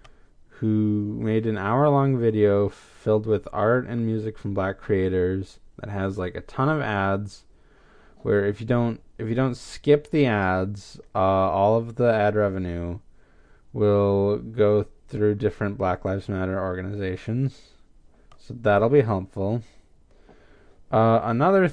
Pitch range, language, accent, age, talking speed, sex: 95-120 Hz, English, American, 20-39, 140 wpm, male